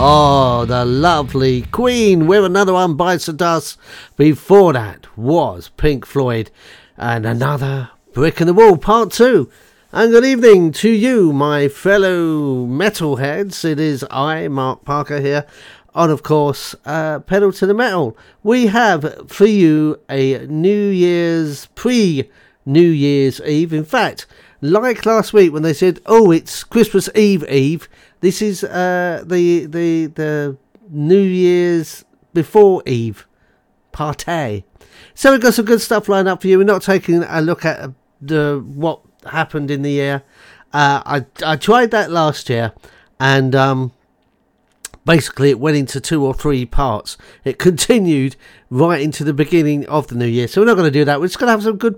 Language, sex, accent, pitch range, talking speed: English, male, British, 140-195 Hz, 165 wpm